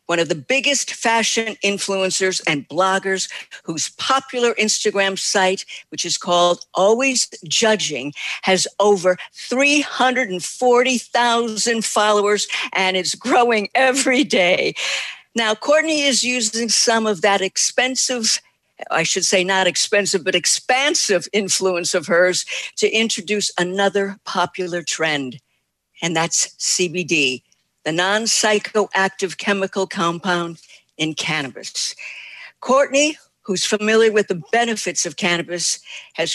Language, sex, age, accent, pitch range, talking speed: English, female, 50-69, American, 180-225 Hz, 110 wpm